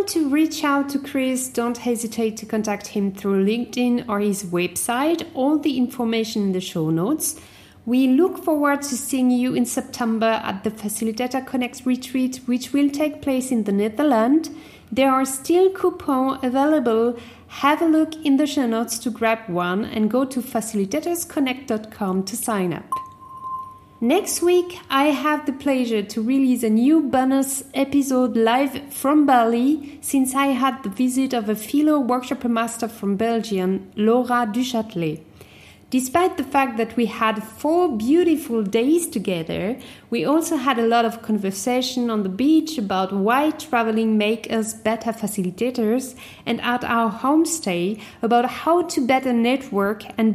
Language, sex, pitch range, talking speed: English, female, 225-285 Hz, 155 wpm